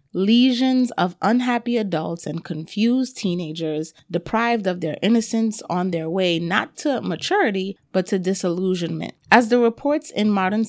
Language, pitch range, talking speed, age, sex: English, 185-235 Hz, 140 wpm, 30-49, female